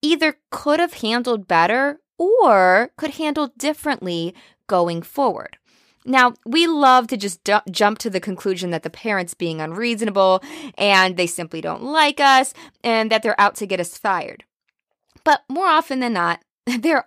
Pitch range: 180-270 Hz